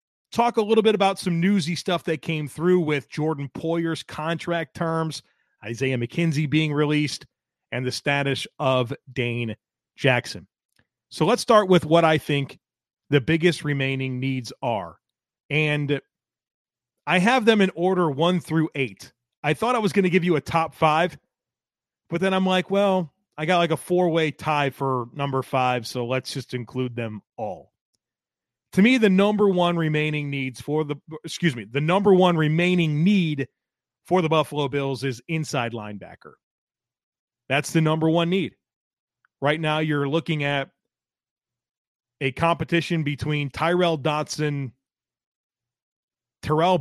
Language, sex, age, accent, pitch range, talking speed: English, male, 30-49, American, 135-175 Hz, 150 wpm